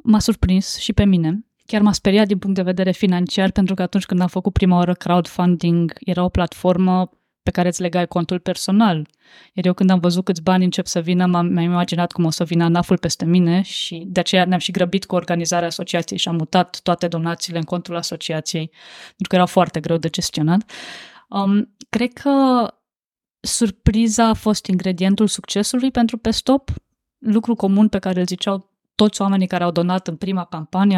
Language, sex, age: Romanian, female, 20-39